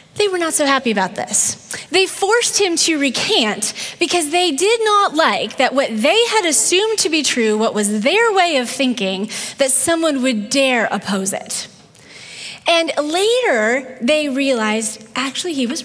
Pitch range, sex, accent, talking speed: 240-330 Hz, female, American, 165 wpm